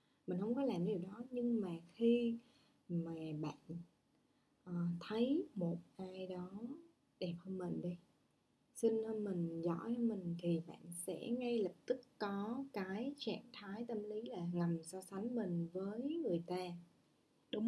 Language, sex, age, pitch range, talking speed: Vietnamese, female, 20-39, 180-235 Hz, 155 wpm